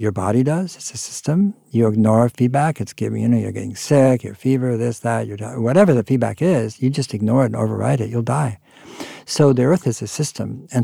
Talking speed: 225 wpm